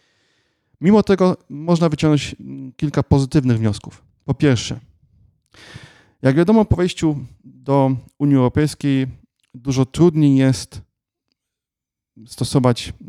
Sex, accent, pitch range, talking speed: male, native, 115-140 Hz, 90 wpm